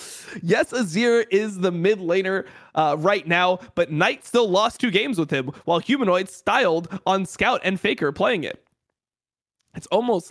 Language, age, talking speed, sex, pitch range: English, 20-39, 165 wpm, male, 165-215 Hz